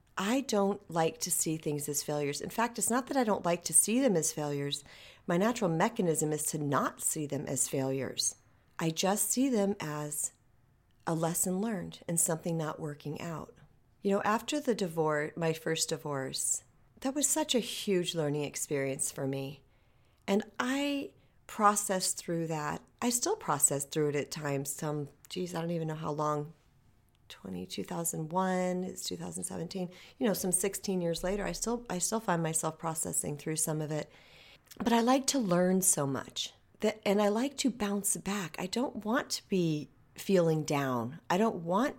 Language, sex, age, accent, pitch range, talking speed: English, female, 40-59, American, 150-205 Hz, 185 wpm